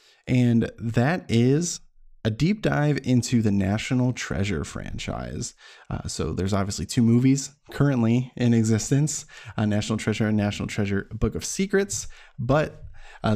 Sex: male